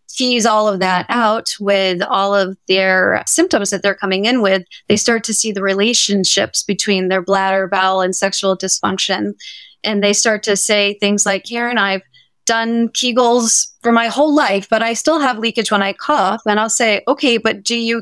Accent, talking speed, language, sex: American, 195 wpm, English, female